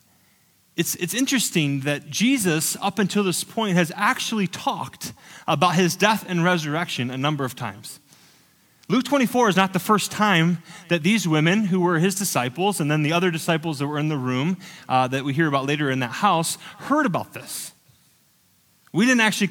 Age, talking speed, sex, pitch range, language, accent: 30-49, 185 wpm, male, 165-220 Hz, English, American